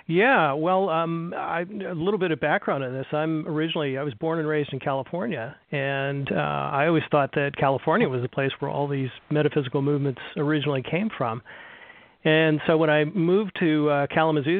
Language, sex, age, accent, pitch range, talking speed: English, male, 40-59, American, 140-160 Hz, 185 wpm